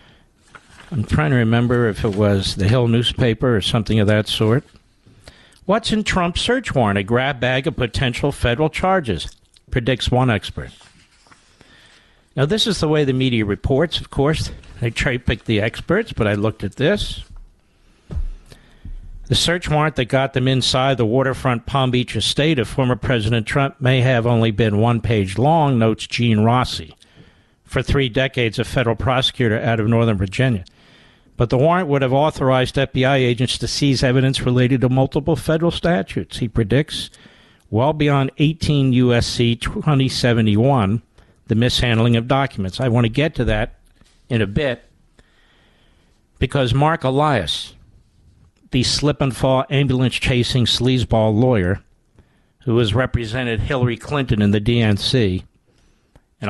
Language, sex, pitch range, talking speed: English, male, 110-135 Hz, 150 wpm